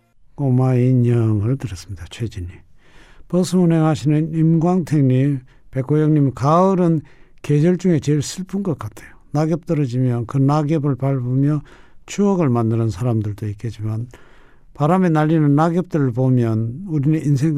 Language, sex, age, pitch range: Korean, male, 60-79, 110-150 Hz